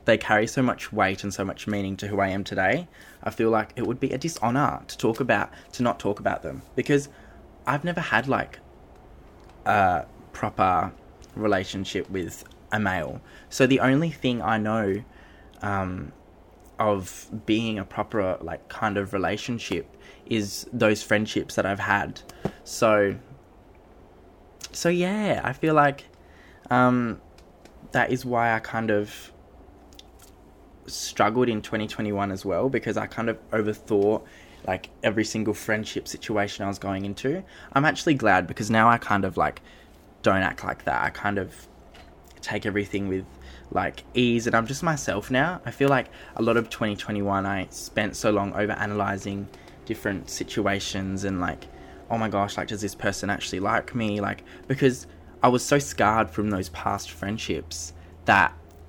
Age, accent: 10-29, Australian